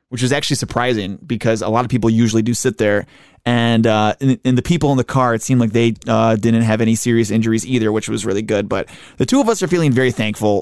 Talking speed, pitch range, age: 255 wpm, 115-150 Hz, 20-39